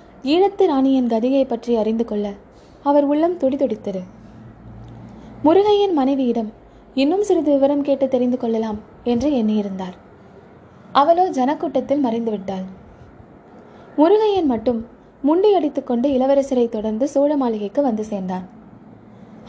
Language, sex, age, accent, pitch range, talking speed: Tamil, female, 20-39, native, 225-300 Hz, 110 wpm